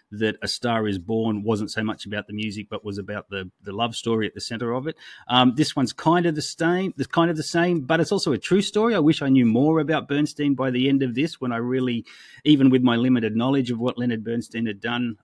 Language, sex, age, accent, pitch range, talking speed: English, male, 30-49, Australian, 105-135 Hz, 265 wpm